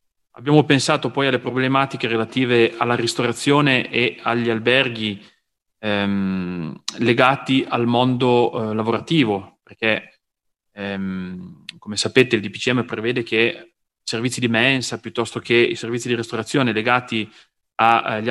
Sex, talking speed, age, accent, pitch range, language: male, 120 wpm, 30-49, native, 110-125 Hz, Italian